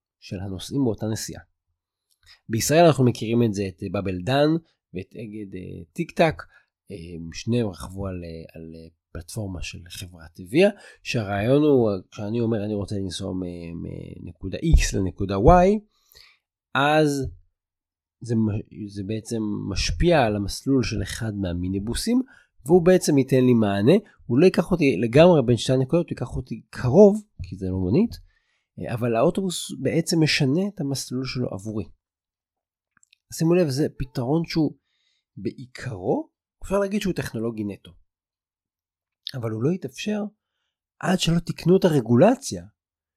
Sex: male